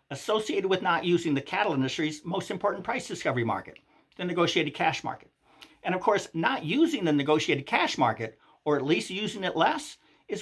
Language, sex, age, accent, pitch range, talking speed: English, male, 50-69, American, 155-245 Hz, 185 wpm